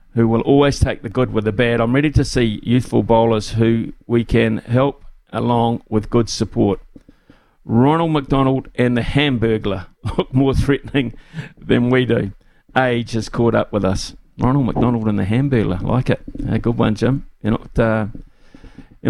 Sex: male